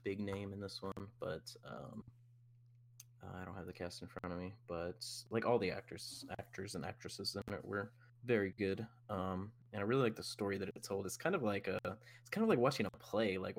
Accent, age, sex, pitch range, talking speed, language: American, 10-29, male, 100-120 Hz, 230 wpm, English